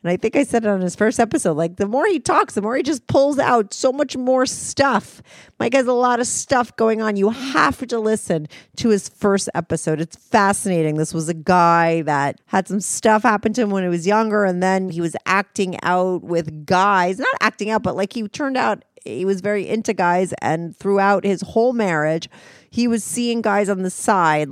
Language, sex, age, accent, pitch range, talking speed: English, female, 40-59, American, 185-250 Hz, 225 wpm